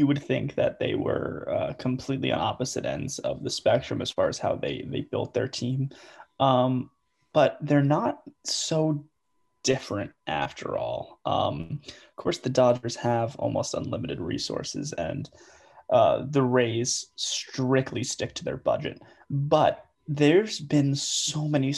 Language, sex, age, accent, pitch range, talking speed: English, male, 20-39, American, 125-145 Hz, 150 wpm